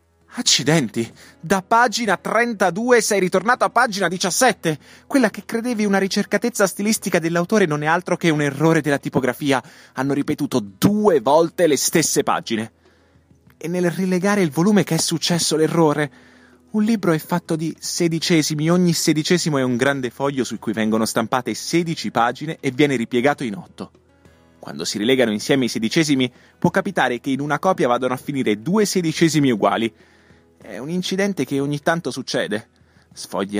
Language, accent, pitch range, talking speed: Italian, native, 115-175 Hz, 160 wpm